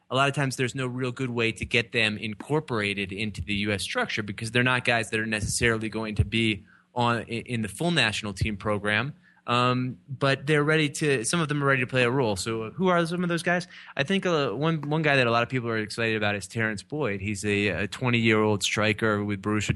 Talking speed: 245 wpm